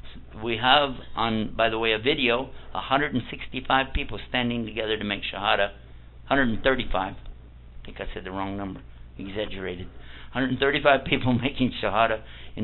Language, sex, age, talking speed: English, male, 60-79, 140 wpm